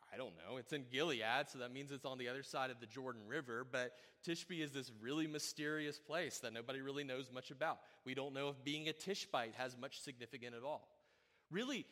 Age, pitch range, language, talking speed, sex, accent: 30-49, 100-135 Hz, English, 220 wpm, male, American